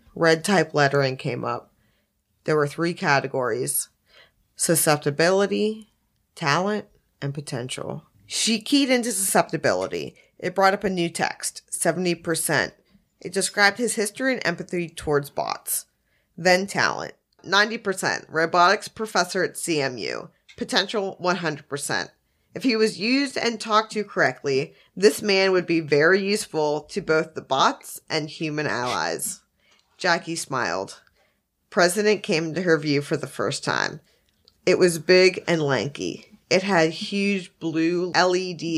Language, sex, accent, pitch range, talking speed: English, female, American, 150-195 Hz, 130 wpm